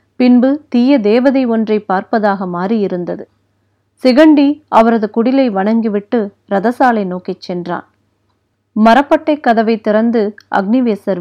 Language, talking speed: Tamil, 90 wpm